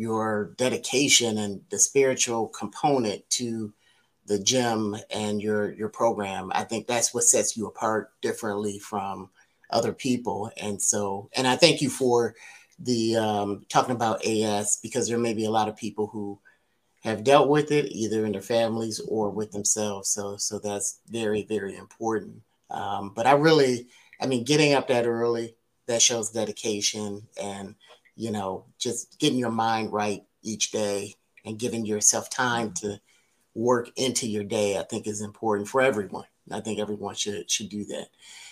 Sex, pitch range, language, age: male, 105-125 Hz, English, 30-49